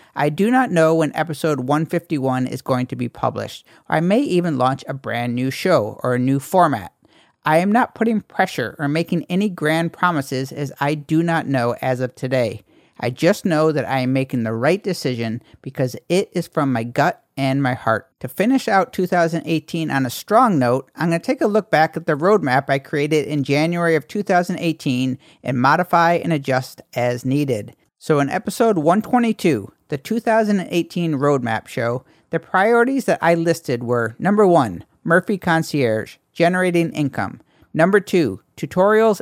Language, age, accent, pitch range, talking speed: English, 50-69, American, 135-180 Hz, 175 wpm